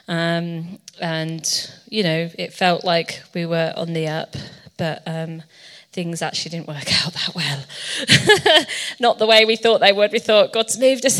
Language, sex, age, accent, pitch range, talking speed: English, female, 30-49, British, 170-200 Hz, 175 wpm